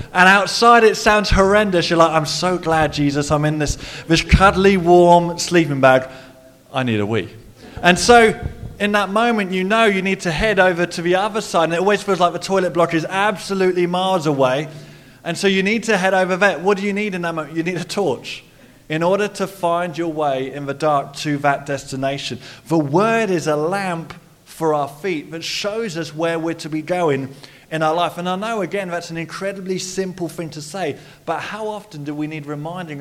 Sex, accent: male, British